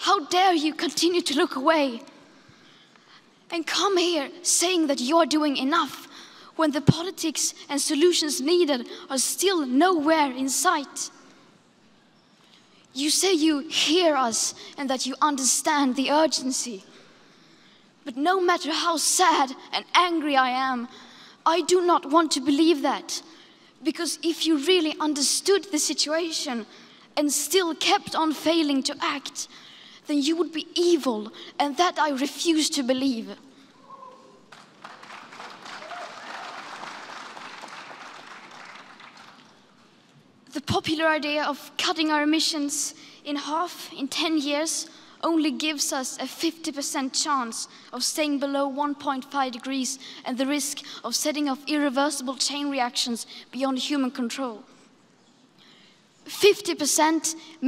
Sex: female